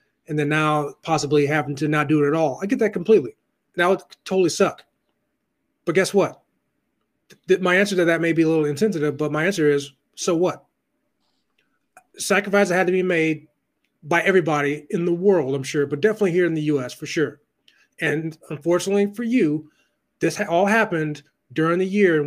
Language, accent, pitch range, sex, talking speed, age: English, American, 150-180 Hz, male, 190 wpm, 30-49